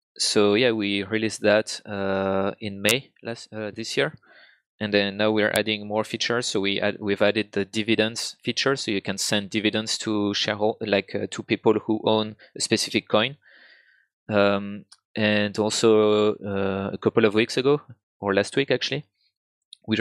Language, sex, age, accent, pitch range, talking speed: English, male, 20-39, French, 105-115 Hz, 170 wpm